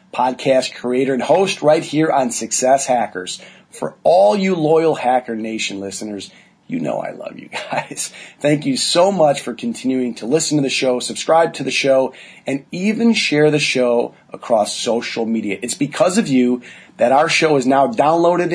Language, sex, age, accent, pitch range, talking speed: English, male, 30-49, American, 120-160 Hz, 180 wpm